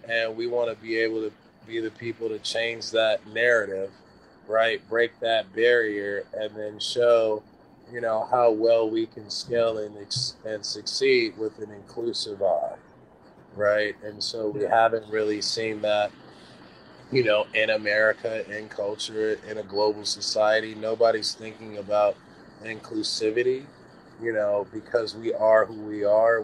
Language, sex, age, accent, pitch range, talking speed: English, male, 20-39, American, 105-115 Hz, 150 wpm